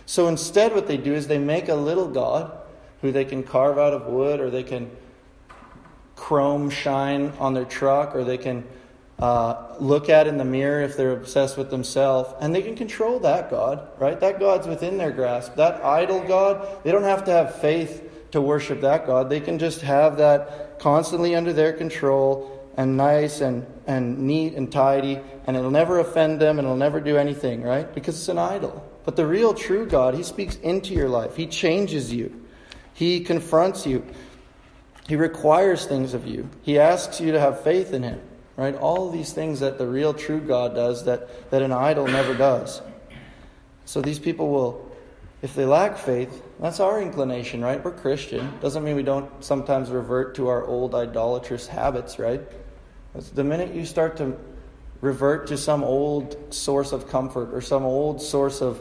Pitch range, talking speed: 130-155 Hz, 190 wpm